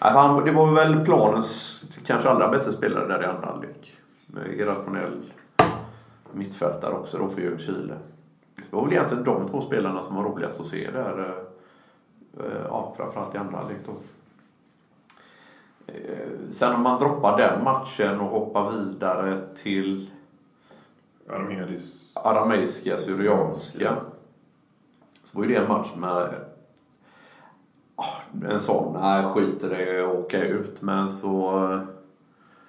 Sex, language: male, English